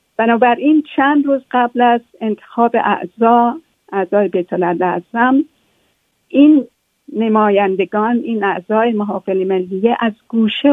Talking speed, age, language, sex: 95 wpm, 50-69, Persian, female